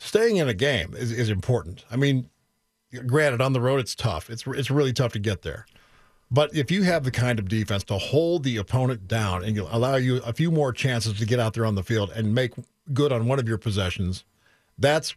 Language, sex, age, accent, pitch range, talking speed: English, male, 50-69, American, 110-150 Hz, 235 wpm